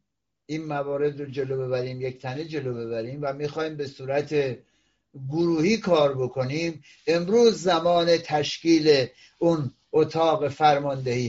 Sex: male